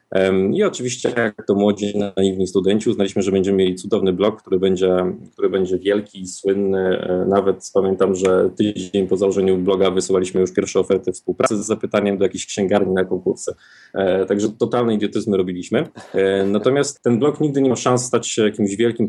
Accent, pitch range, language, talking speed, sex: native, 95-120 Hz, Polish, 170 wpm, male